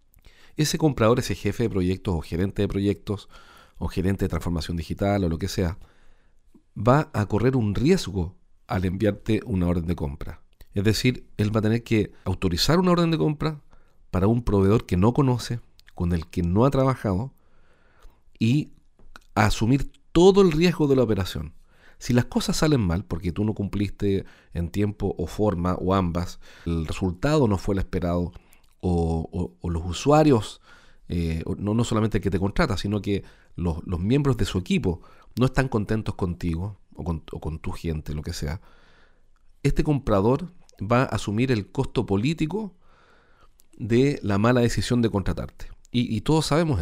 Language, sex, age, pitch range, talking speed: Spanish, male, 40-59, 90-120 Hz, 175 wpm